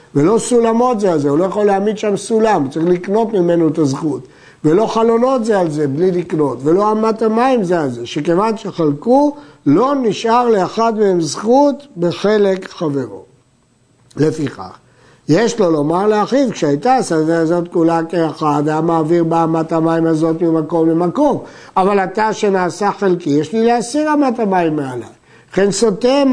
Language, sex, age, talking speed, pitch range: Hebrew, male, 60-79, 155 wpm, 160-230 Hz